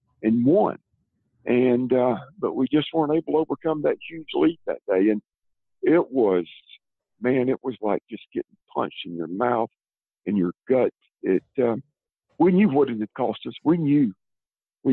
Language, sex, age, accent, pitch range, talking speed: English, male, 50-69, American, 115-150 Hz, 175 wpm